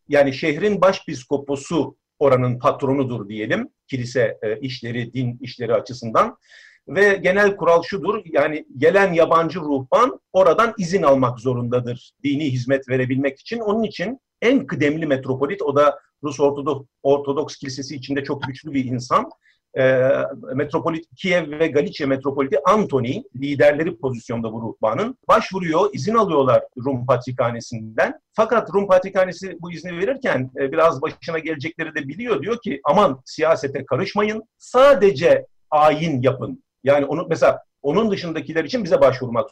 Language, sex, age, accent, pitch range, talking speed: Turkish, male, 50-69, native, 135-190 Hz, 130 wpm